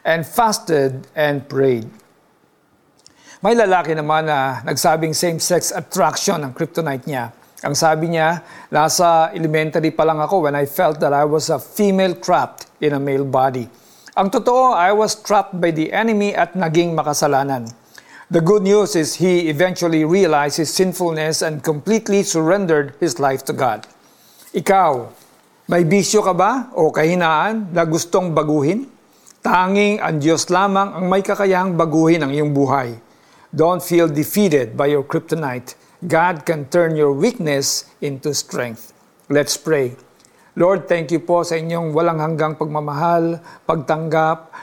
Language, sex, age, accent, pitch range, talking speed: Filipino, male, 50-69, native, 145-180 Hz, 145 wpm